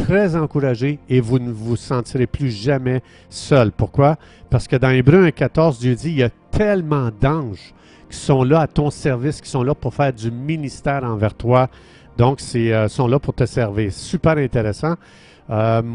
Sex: male